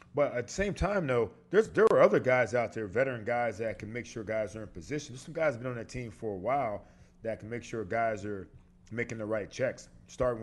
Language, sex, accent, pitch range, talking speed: English, male, American, 110-135 Hz, 265 wpm